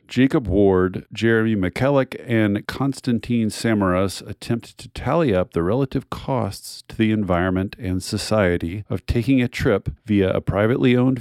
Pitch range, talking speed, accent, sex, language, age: 90-115 Hz, 145 wpm, American, male, English, 40-59